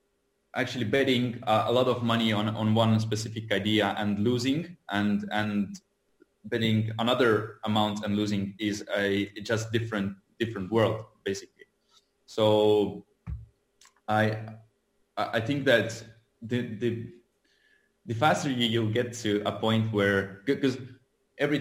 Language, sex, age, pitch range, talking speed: English, male, 20-39, 100-120 Hz, 125 wpm